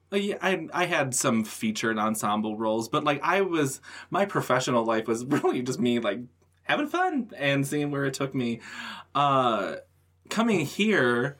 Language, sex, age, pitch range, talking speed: English, male, 20-39, 110-145 Hz, 165 wpm